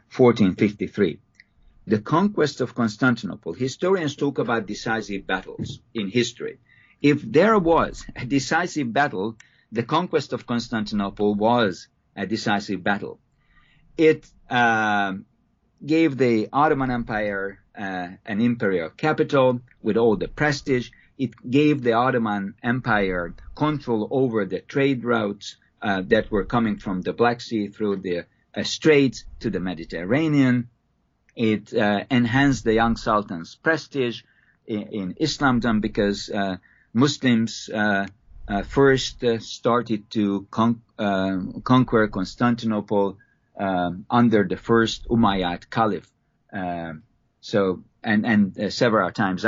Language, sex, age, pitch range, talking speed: English, male, 50-69, 100-130 Hz, 120 wpm